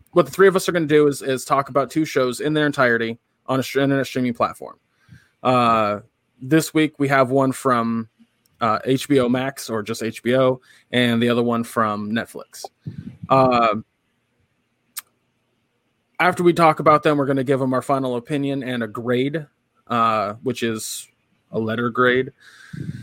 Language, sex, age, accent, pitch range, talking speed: English, male, 20-39, American, 115-145 Hz, 170 wpm